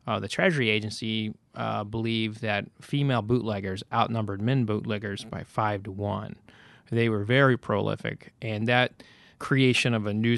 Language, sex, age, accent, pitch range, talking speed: English, male, 30-49, American, 105-125 Hz, 150 wpm